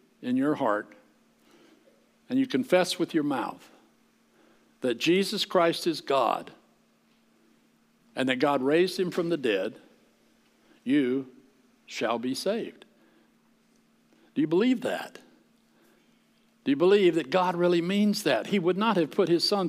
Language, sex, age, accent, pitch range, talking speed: English, male, 60-79, American, 150-215 Hz, 135 wpm